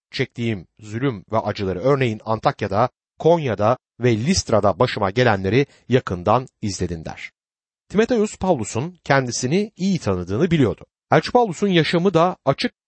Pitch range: 105-175 Hz